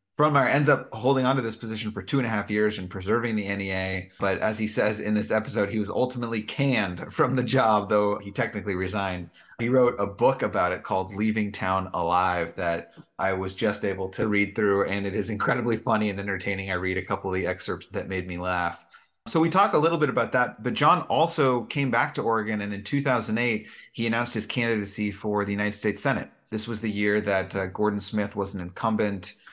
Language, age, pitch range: English, 30-49, 95-110 Hz